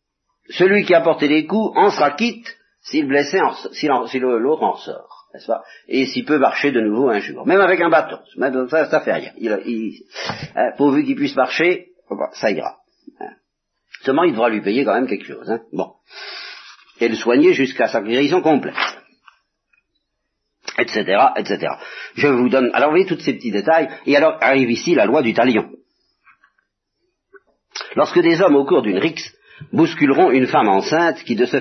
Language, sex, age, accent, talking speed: French, male, 50-69, French, 180 wpm